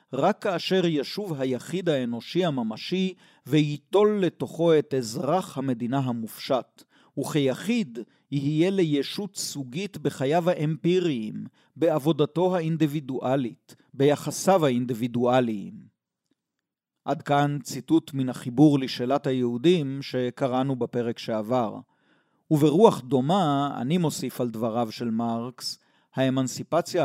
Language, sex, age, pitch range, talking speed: Hebrew, male, 40-59, 125-165 Hz, 90 wpm